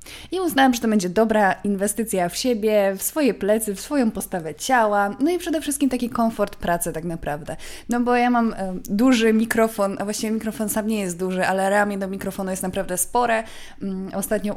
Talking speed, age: 190 wpm, 20-39